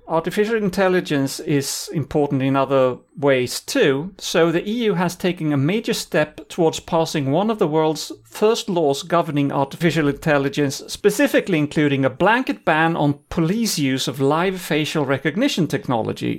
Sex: male